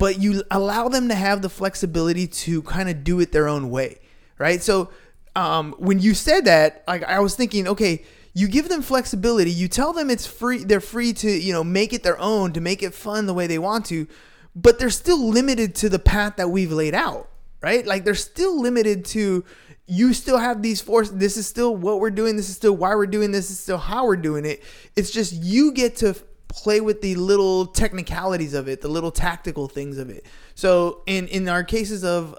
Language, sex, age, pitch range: English, male, 20-39, 165-210 Hz